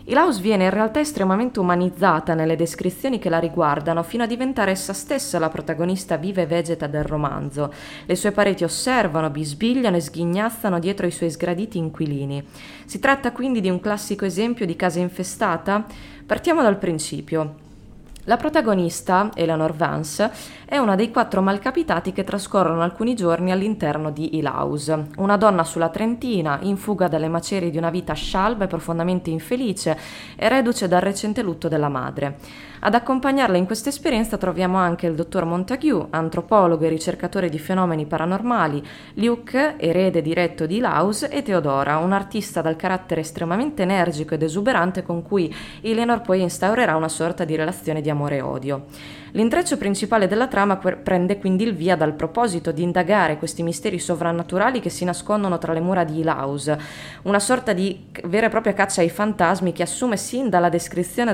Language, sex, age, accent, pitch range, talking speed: Italian, female, 20-39, native, 165-210 Hz, 165 wpm